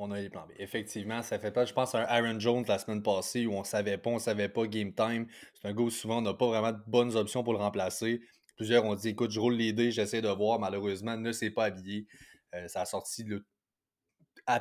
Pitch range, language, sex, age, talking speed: 110-135 Hz, French, male, 20-39, 265 wpm